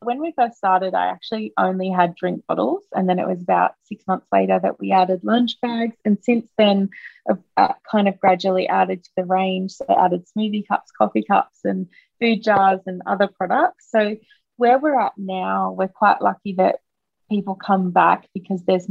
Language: English